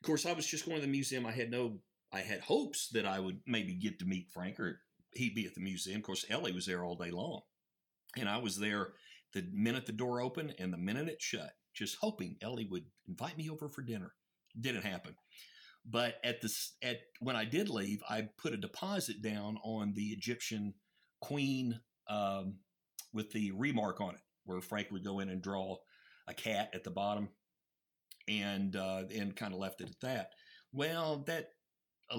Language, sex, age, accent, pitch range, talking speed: English, male, 50-69, American, 100-125 Hz, 205 wpm